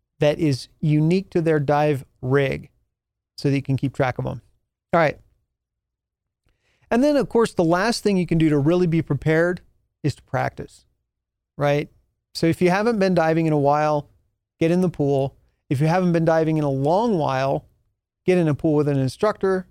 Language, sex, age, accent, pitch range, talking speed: English, male, 40-59, American, 140-185 Hz, 195 wpm